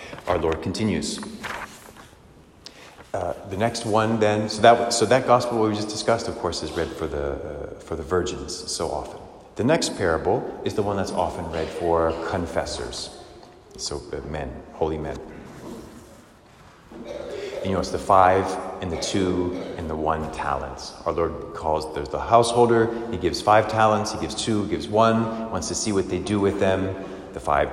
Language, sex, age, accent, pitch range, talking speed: English, male, 30-49, American, 90-120 Hz, 180 wpm